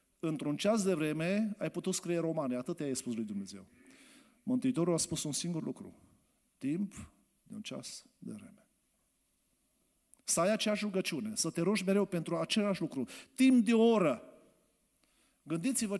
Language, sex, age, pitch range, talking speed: Romanian, male, 50-69, 160-225 Hz, 160 wpm